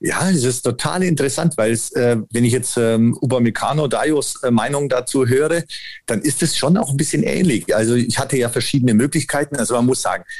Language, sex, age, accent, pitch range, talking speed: German, male, 40-59, German, 115-145 Hz, 200 wpm